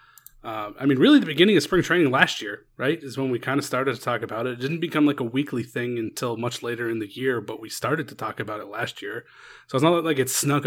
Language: English